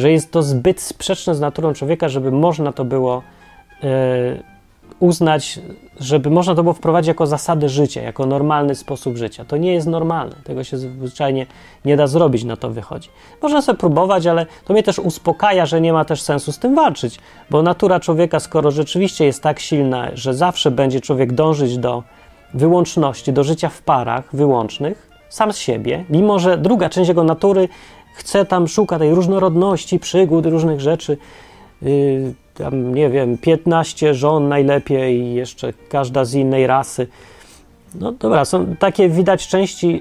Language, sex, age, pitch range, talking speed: Polish, male, 30-49, 135-175 Hz, 165 wpm